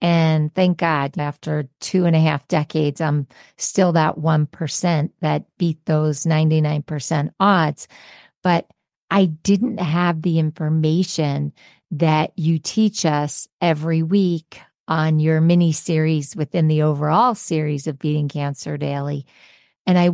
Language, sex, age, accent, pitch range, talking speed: English, female, 50-69, American, 155-175 Hz, 130 wpm